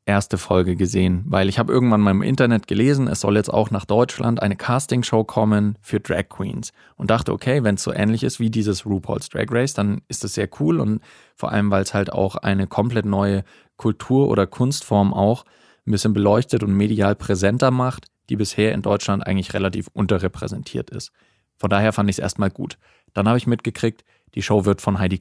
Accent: German